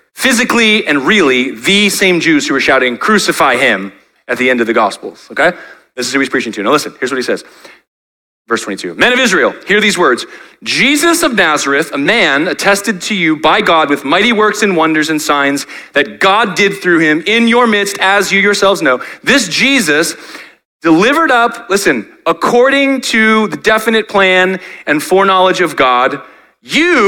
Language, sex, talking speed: English, male, 180 wpm